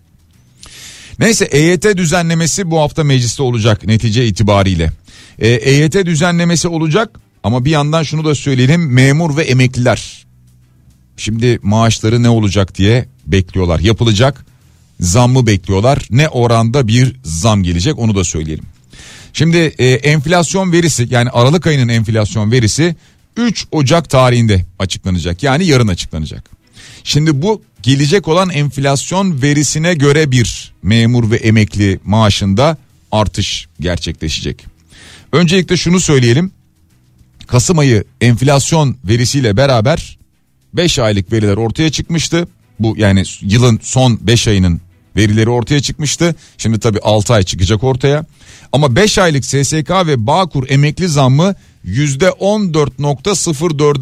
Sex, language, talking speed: male, Turkish, 115 wpm